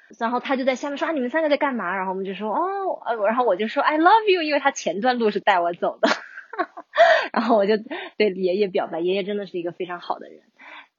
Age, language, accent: 20-39, Chinese, native